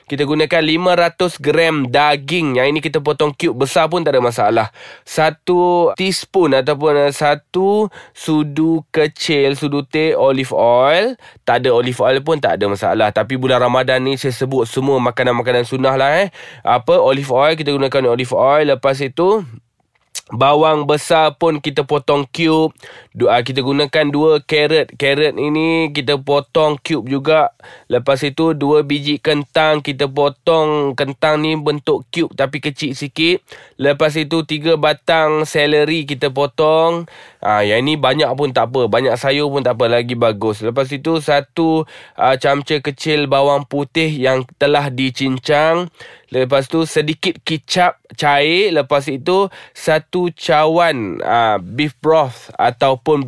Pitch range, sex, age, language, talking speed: 130-155 Hz, male, 20-39, Malay, 145 wpm